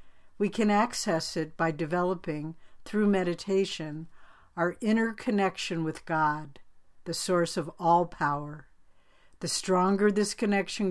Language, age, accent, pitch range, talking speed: English, 60-79, American, 160-200 Hz, 120 wpm